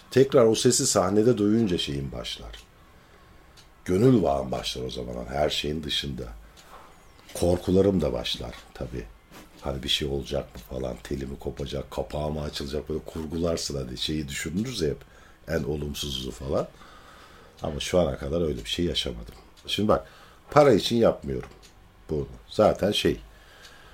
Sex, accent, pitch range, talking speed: male, native, 70-100 Hz, 140 wpm